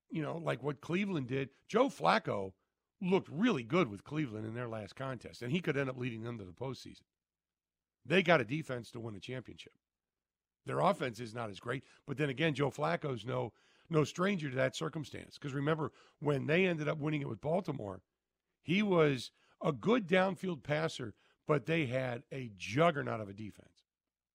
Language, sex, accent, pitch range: English, male, American, 110-155 Hz